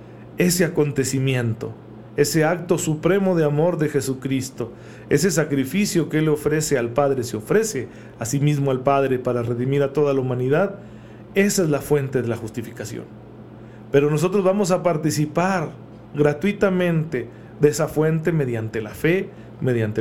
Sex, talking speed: male, 145 wpm